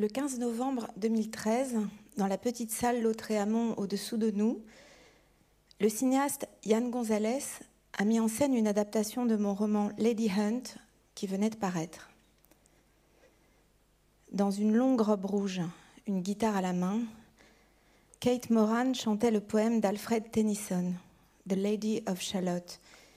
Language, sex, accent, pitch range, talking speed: French, female, French, 195-225 Hz, 135 wpm